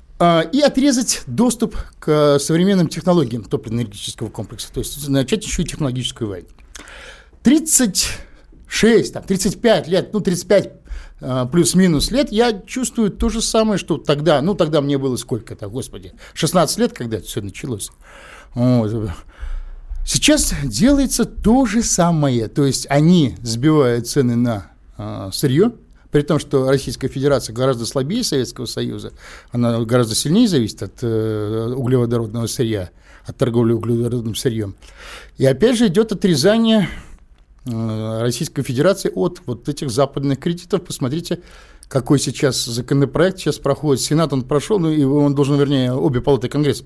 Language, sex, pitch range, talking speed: Russian, male, 120-175 Hz, 130 wpm